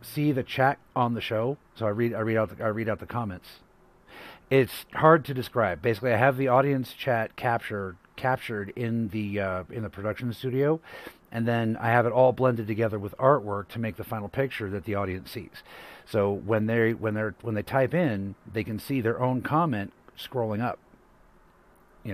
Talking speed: 200 wpm